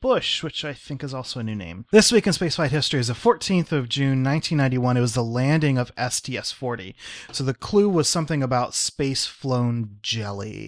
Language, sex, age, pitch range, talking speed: English, male, 30-49, 115-145 Hz, 195 wpm